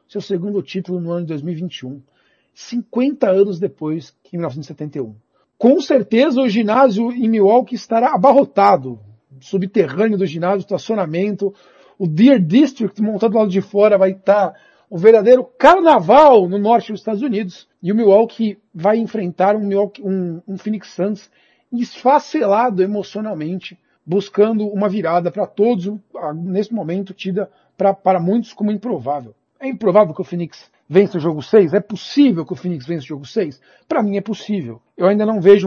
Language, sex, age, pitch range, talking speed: Portuguese, male, 50-69, 170-215 Hz, 155 wpm